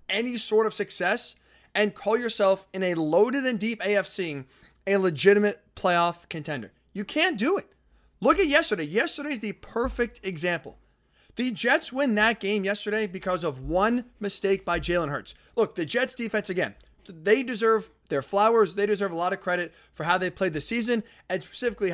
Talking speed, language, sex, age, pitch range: 175 wpm, English, male, 20-39, 170-215 Hz